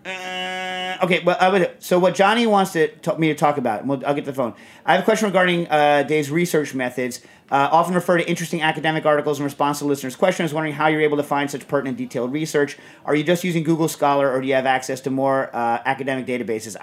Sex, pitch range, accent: male, 130-160 Hz, American